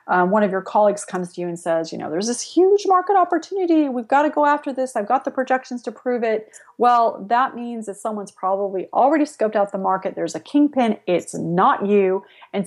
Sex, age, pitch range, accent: female, 30-49, 190-245 Hz, American